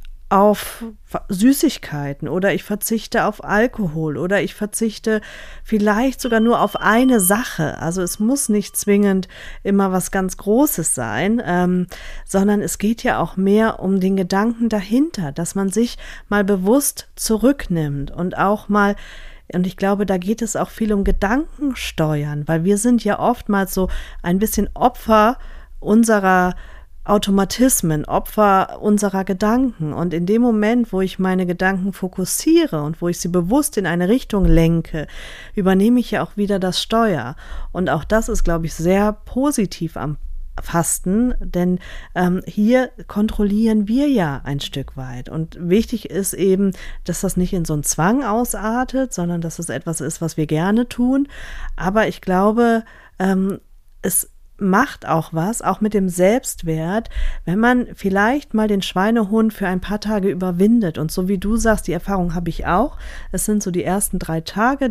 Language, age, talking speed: German, 40-59, 165 wpm